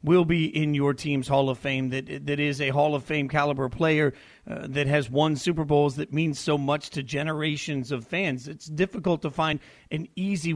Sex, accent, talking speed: male, American, 210 wpm